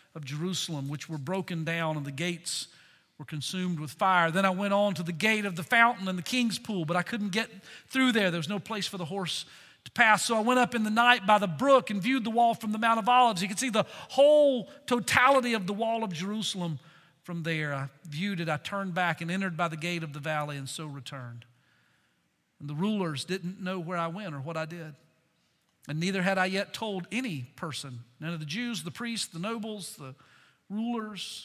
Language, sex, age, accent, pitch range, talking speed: English, male, 40-59, American, 160-215 Hz, 230 wpm